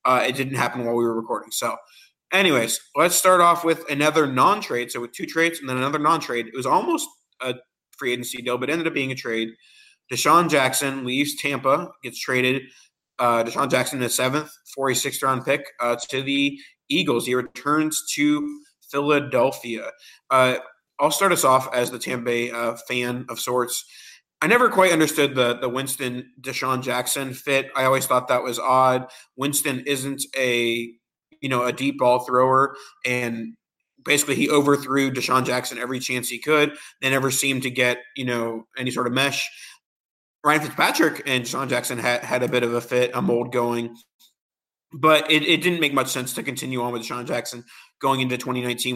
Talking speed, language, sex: 190 wpm, English, male